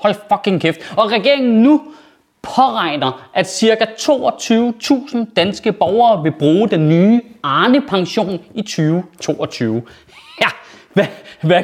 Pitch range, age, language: 185-240 Hz, 30-49, Danish